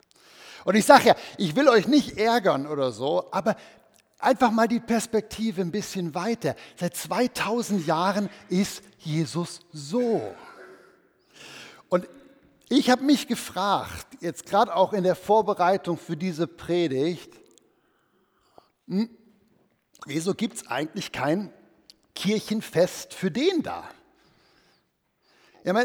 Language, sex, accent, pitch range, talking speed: German, male, German, 180-250 Hz, 115 wpm